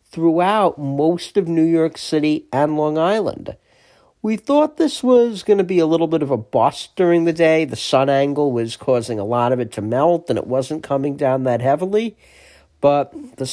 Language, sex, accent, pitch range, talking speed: English, male, American, 140-180 Hz, 200 wpm